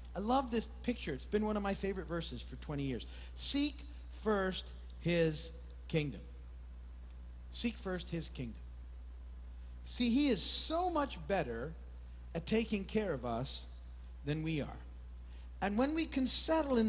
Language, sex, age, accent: English, male, 50-69, American